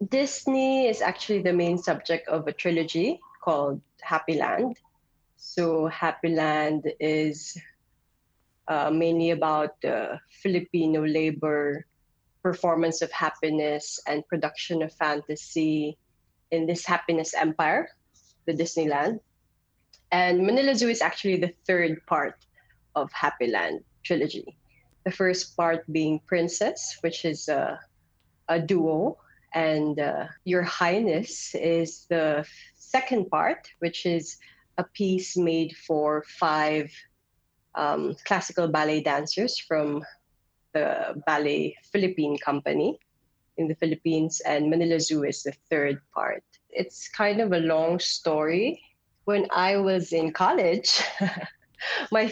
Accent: Filipino